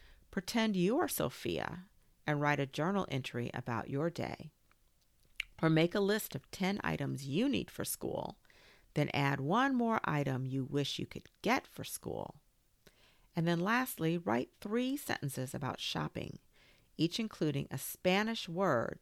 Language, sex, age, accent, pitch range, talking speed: English, female, 50-69, American, 140-200 Hz, 150 wpm